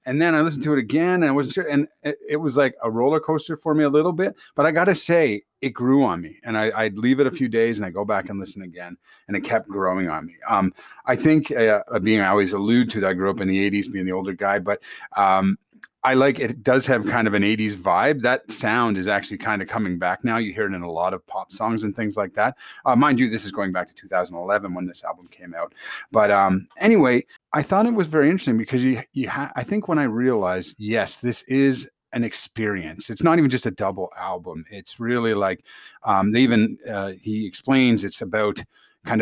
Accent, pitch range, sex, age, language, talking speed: American, 100-140 Hz, male, 30-49, English, 250 wpm